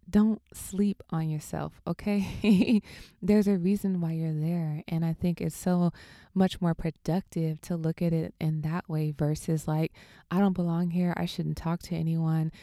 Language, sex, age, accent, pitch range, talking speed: English, female, 20-39, American, 155-185 Hz, 175 wpm